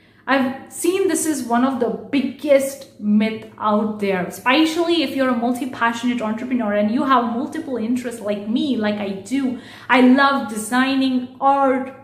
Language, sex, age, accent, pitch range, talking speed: English, female, 30-49, Indian, 235-275 Hz, 160 wpm